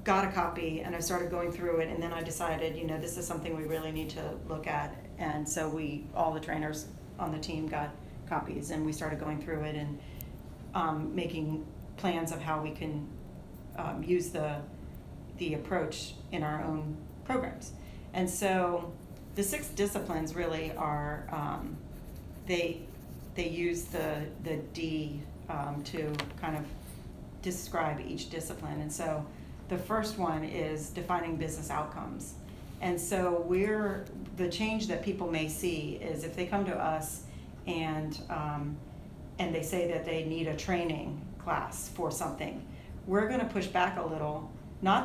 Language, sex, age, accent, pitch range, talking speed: English, female, 40-59, American, 155-180 Hz, 165 wpm